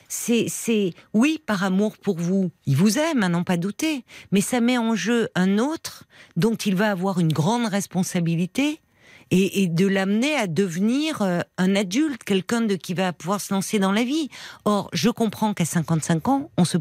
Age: 50-69